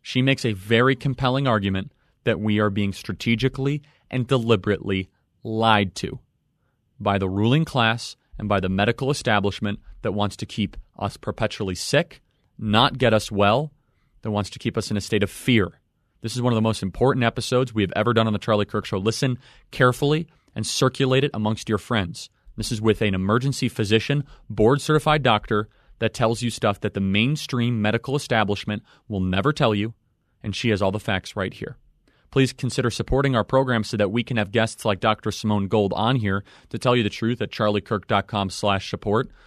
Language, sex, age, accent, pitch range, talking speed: English, male, 30-49, American, 105-125 Hz, 190 wpm